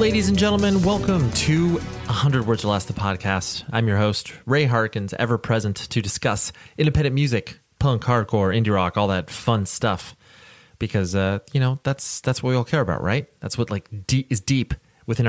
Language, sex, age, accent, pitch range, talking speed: English, male, 30-49, American, 95-120 Hz, 190 wpm